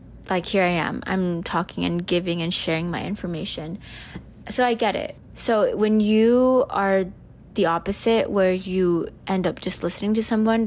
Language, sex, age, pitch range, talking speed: English, female, 20-39, 175-205 Hz, 170 wpm